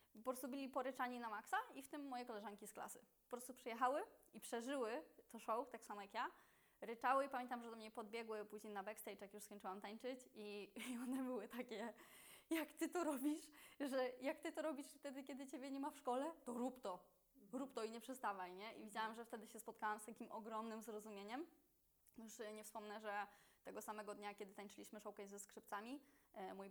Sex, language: female, Polish